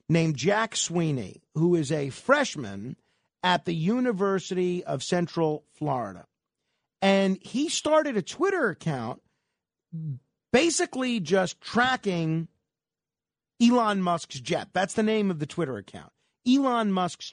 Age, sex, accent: 40-59, male, American